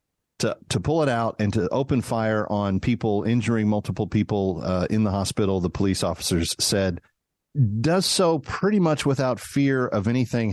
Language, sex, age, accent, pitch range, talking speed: English, male, 40-59, American, 100-130 Hz, 170 wpm